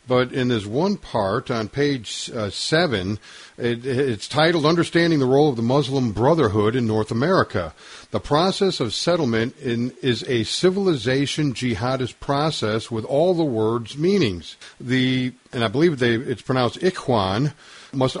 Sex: male